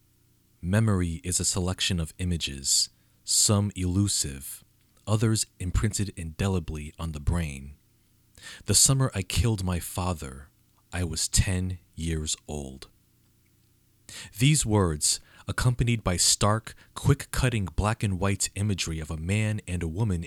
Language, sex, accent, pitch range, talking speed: English, male, American, 90-115 Hz, 115 wpm